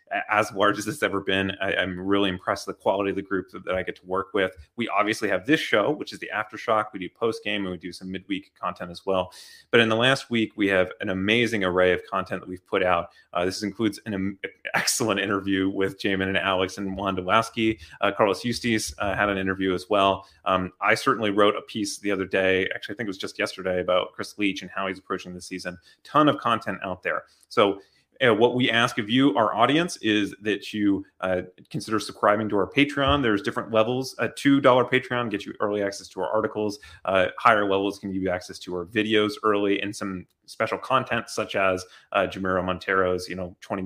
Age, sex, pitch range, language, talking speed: 30-49, male, 90-105 Hz, English, 225 wpm